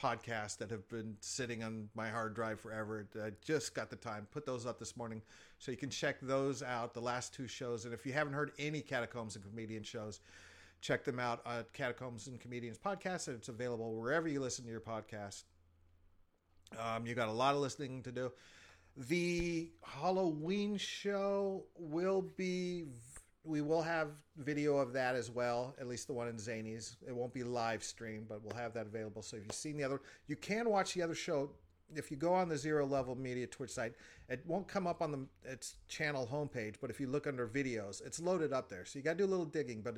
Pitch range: 110-145 Hz